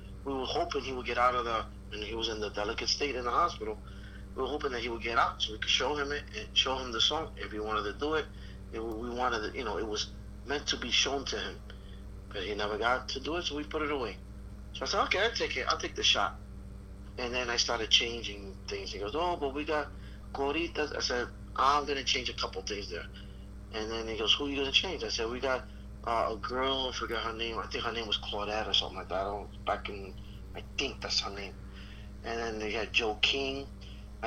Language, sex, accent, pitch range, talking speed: English, male, American, 100-135 Hz, 265 wpm